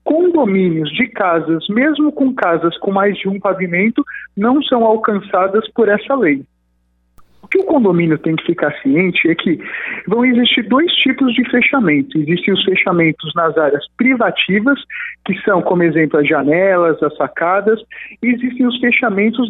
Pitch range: 165-250 Hz